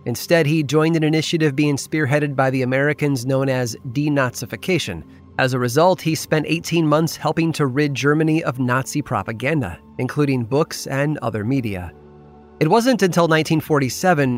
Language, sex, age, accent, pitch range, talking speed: English, male, 30-49, American, 120-160 Hz, 150 wpm